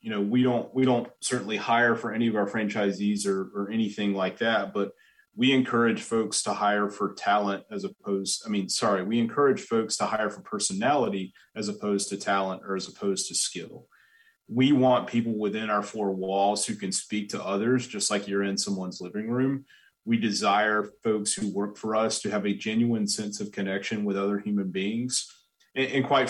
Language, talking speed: English, 195 wpm